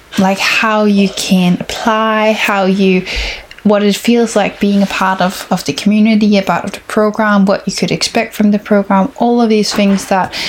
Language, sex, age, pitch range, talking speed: English, female, 10-29, 190-215 Hz, 190 wpm